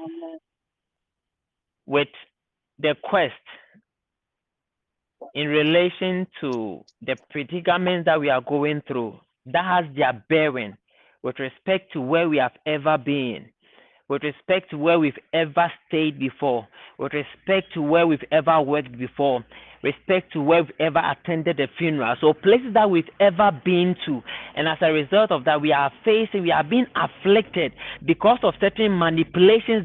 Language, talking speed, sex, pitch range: English, 145 wpm, male, 150-200 Hz